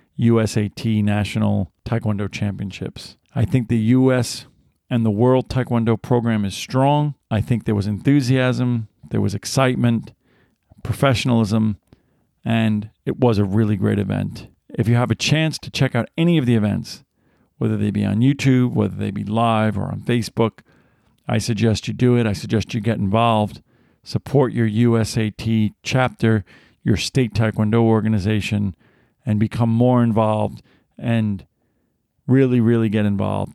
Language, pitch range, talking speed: English, 105-120 Hz, 145 wpm